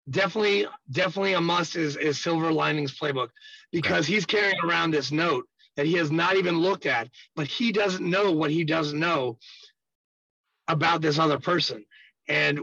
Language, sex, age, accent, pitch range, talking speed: English, male, 30-49, American, 145-190 Hz, 165 wpm